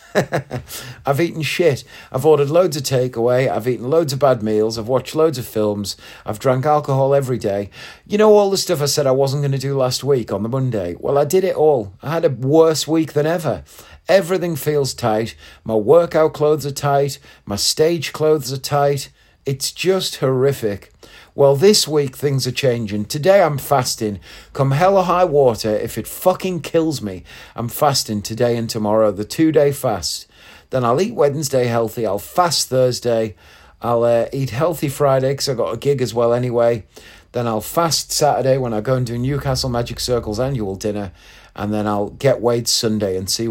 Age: 40-59